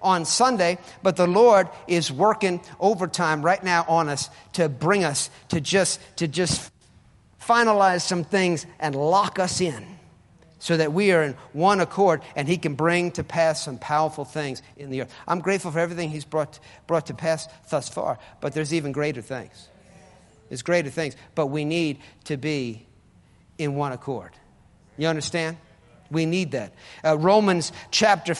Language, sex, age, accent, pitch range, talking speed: English, male, 50-69, American, 135-185 Hz, 170 wpm